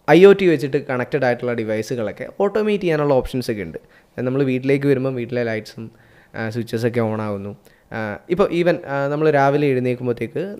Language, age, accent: Malayalam, 20-39, native